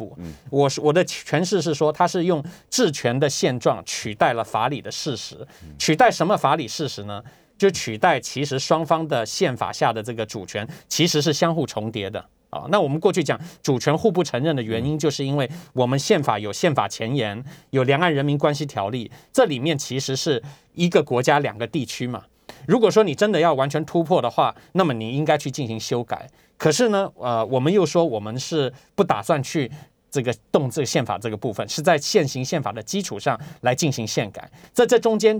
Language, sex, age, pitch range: Chinese, male, 20-39, 120-165 Hz